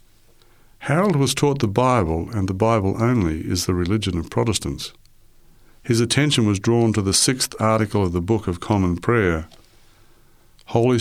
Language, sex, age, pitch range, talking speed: English, male, 60-79, 95-115 Hz, 160 wpm